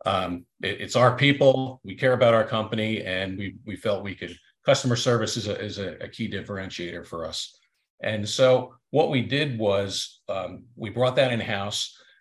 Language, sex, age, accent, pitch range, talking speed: English, male, 50-69, American, 105-125 Hz, 185 wpm